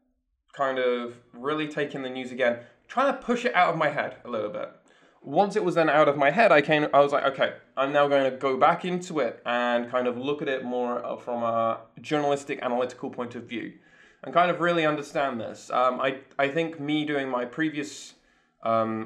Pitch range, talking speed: 120-155 Hz, 215 wpm